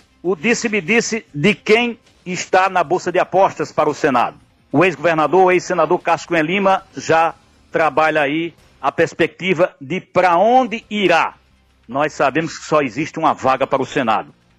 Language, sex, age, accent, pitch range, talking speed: Portuguese, male, 60-79, Brazilian, 135-185 Hz, 150 wpm